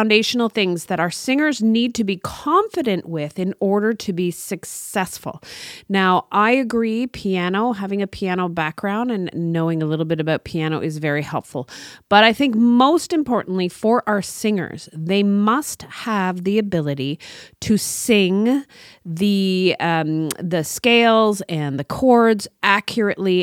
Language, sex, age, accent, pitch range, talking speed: English, female, 30-49, American, 170-225 Hz, 145 wpm